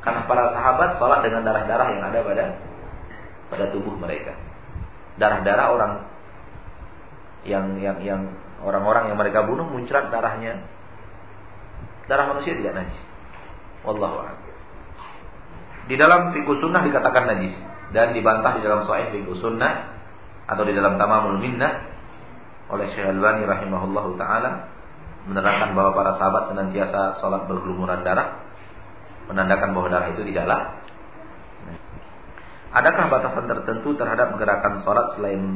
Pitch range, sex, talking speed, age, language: 95-115 Hz, male, 125 wpm, 50-69, Malay